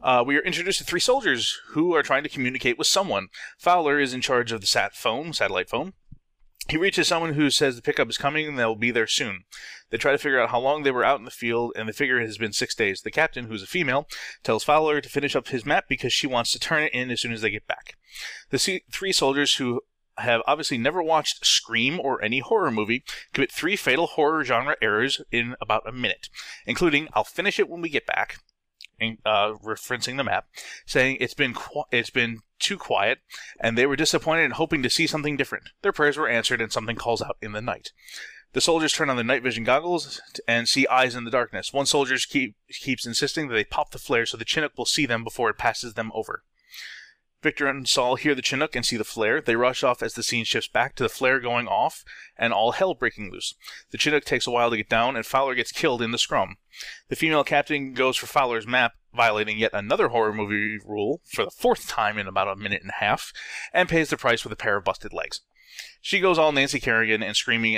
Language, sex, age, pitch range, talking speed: English, male, 20-39, 115-150 Hz, 235 wpm